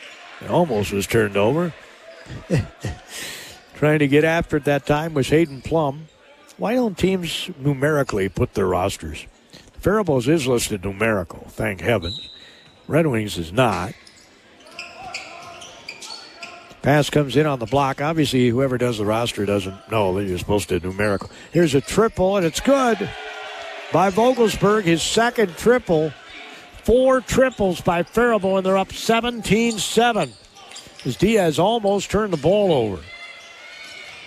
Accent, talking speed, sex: American, 130 wpm, male